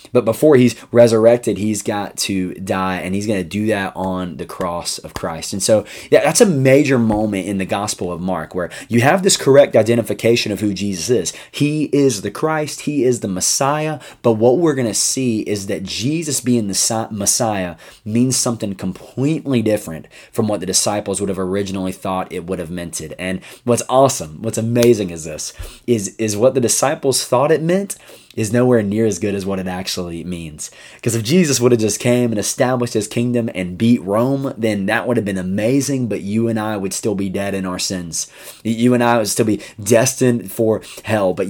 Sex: male